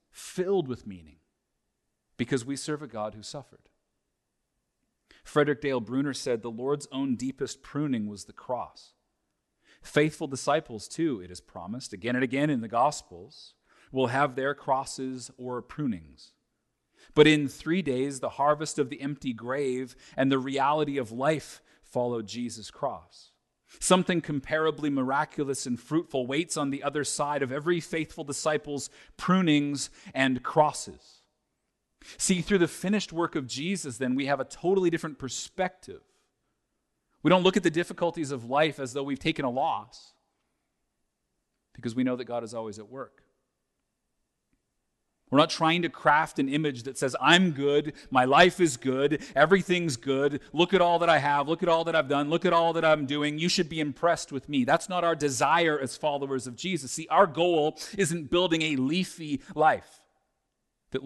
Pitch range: 130-165 Hz